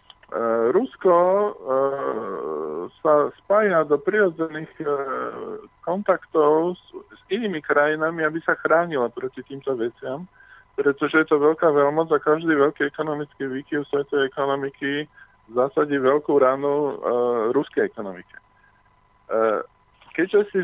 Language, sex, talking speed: Slovak, male, 115 wpm